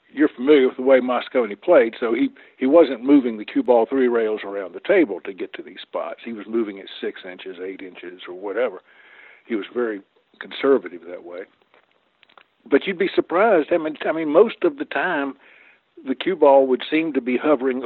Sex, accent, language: male, American, English